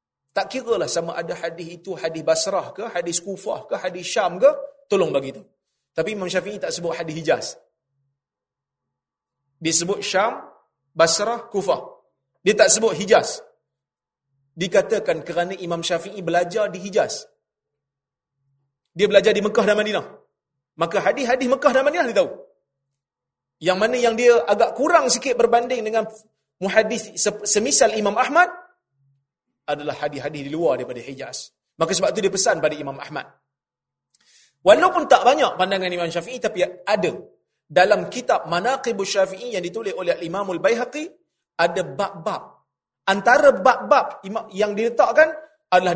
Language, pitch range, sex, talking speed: Malay, 150-230 Hz, male, 135 wpm